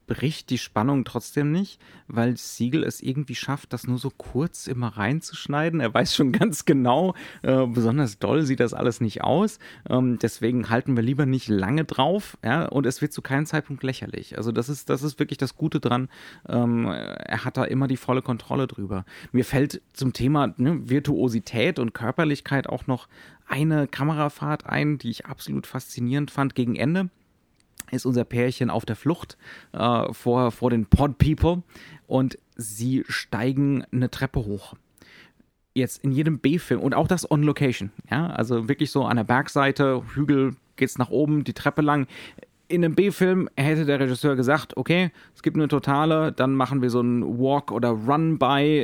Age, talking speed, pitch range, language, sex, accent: 30-49, 175 wpm, 120-150 Hz, German, male, German